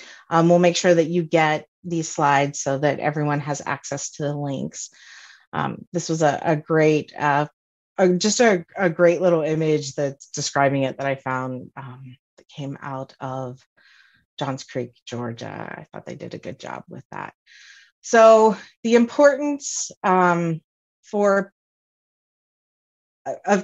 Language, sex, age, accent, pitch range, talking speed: English, female, 30-49, American, 145-190 Hz, 150 wpm